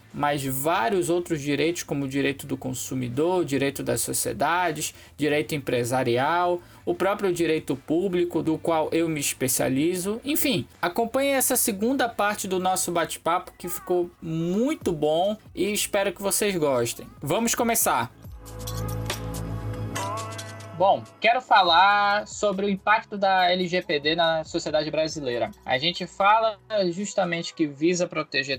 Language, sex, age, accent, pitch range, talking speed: Portuguese, male, 20-39, Brazilian, 145-215 Hz, 125 wpm